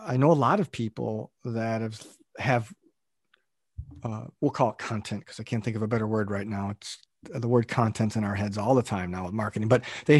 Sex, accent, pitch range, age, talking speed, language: male, American, 115-145 Hz, 40-59, 230 wpm, English